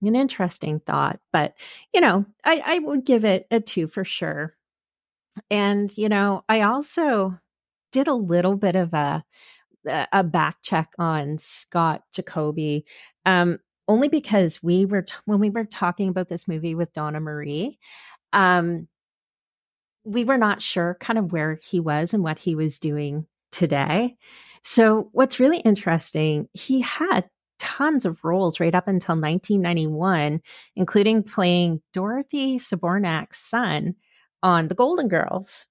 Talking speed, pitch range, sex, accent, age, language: 145 wpm, 165-210 Hz, female, American, 30-49, English